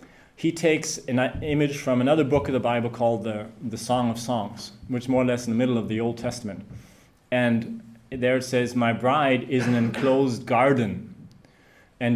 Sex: male